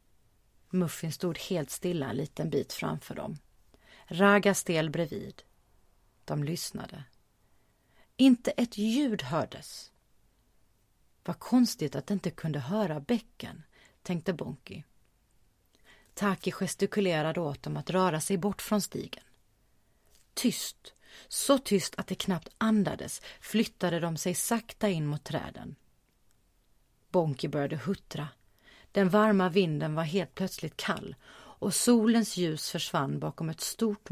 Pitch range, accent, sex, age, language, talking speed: 145-205 Hz, Swedish, female, 30-49, English, 120 wpm